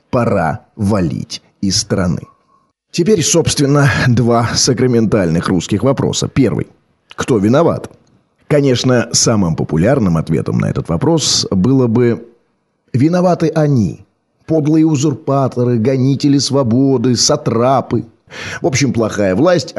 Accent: native